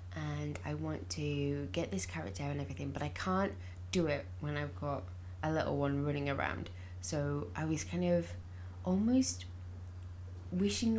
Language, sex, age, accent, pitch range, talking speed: English, female, 20-39, British, 85-95 Hz, 160 wpm